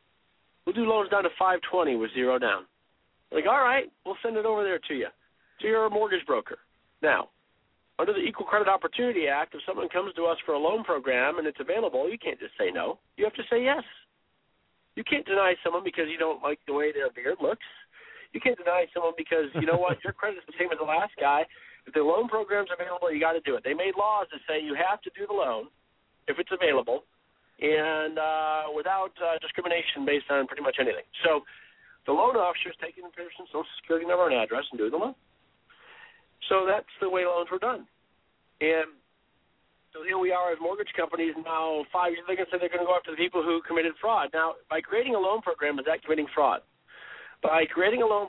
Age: 50-69